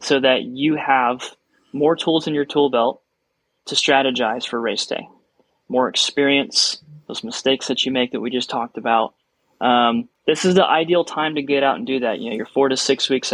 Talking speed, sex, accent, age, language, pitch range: 205 wpm, male, American, 20-39, English, 125-145 Hz